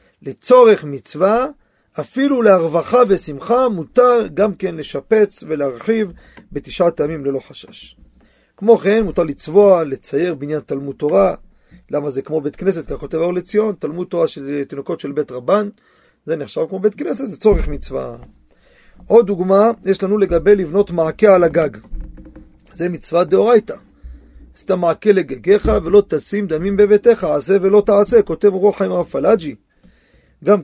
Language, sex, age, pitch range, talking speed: Hebrew, male, 40-59, 155-210 Hz, 145 wpm